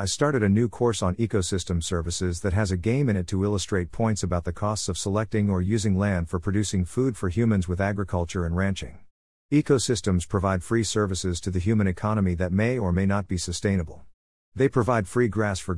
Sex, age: male, 50-69